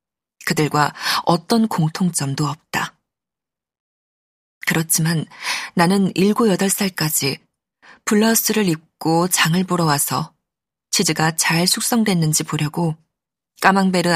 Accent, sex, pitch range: native, female, 150-195 Hz